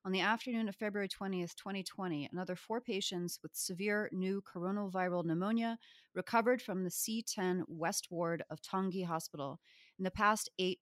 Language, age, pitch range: English, 30-49, 175-210 Hz